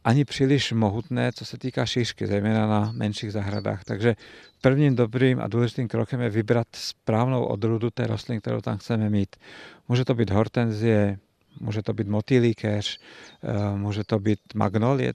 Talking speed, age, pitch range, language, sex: 155 wpm, 50-69, 110-125 Hz, Czech, male